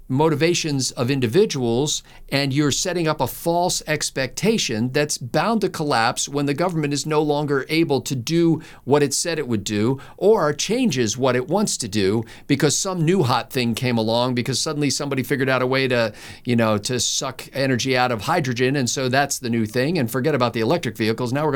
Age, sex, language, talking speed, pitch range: 50-69, male, English, 205 wpm, 115-155 Hz